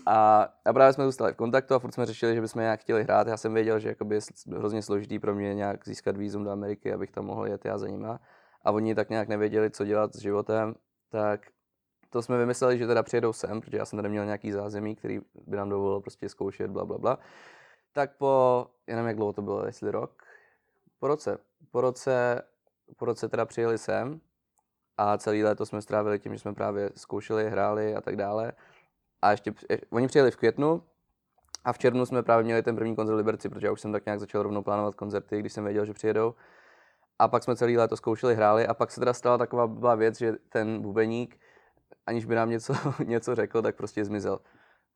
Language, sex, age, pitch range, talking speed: Czech, male, 20-39, 105-120 Hz, 210 wpm